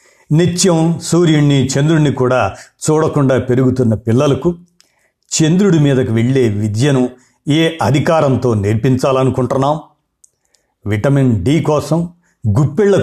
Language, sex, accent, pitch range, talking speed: Telugu, male, native, 120-160 Hz, 85 wpm